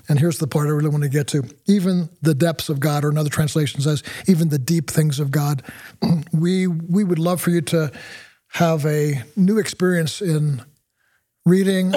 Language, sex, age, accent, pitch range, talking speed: English, male, 50-69, American, 150-170 Hz, 190 wpm